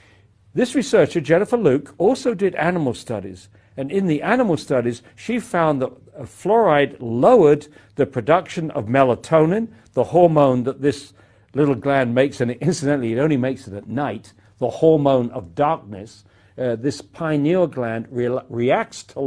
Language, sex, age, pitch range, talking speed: English, male, 60-79, 110-155 Hz, 145 wpm